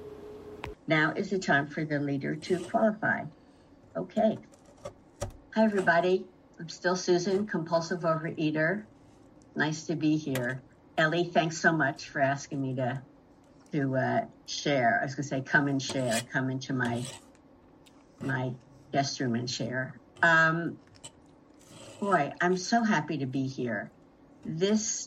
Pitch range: 130-170 Hz